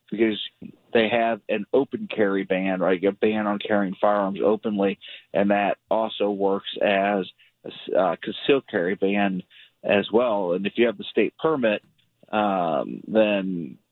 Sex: male